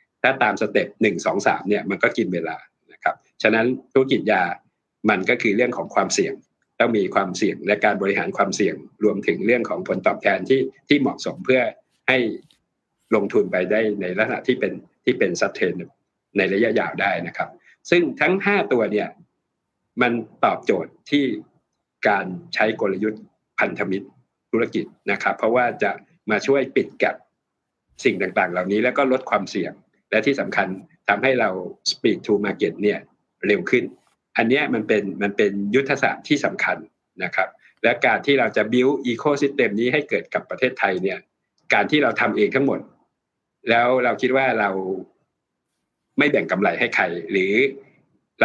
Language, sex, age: Thai, male, 60-79